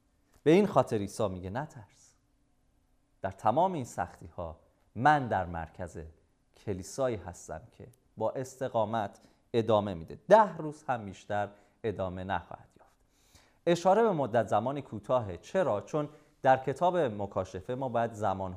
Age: 30-49